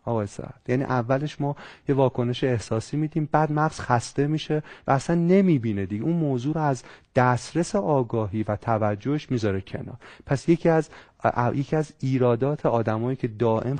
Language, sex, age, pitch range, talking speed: Persian, male, 30-49, 110-155 Hz, 150 wpm